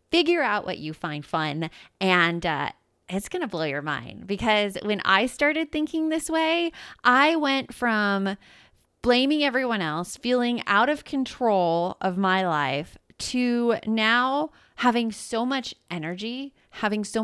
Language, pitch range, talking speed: English, 180-250 Hz, 145 wpm